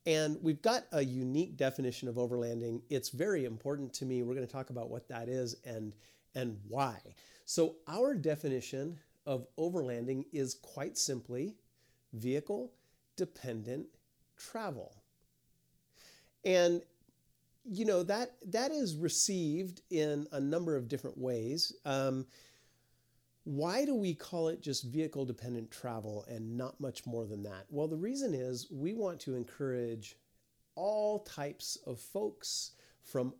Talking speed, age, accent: 135 wpm, 40-59, American